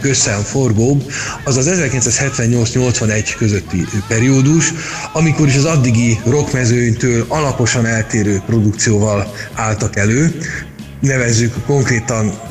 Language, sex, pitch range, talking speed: Hungarian, male, 105-140 Hz, 85 wpm